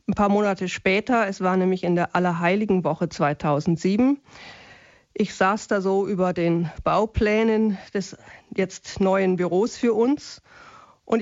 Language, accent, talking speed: German, German, 140 wpm